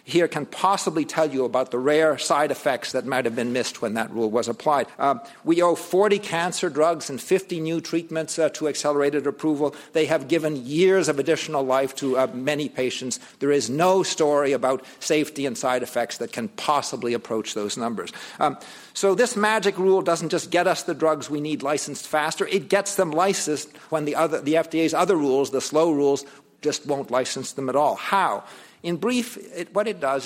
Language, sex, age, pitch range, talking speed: English, male, 50-69, 135-165 Hz, 200 wpm